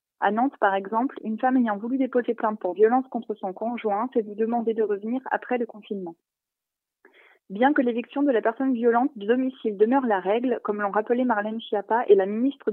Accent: French